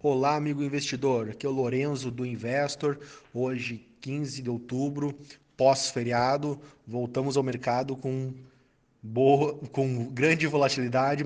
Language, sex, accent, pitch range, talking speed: Portuguese, male, Brazilian, 120-145 Hz, 115 wpm